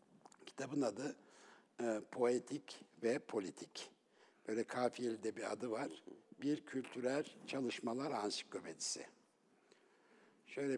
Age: 60-79